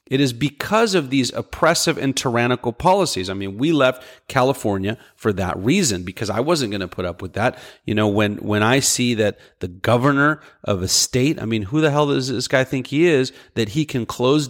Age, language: 30-49, English